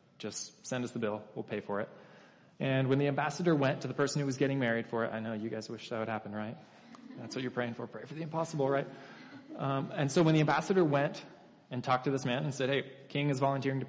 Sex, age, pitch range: male, 20-39, 115-155 Hz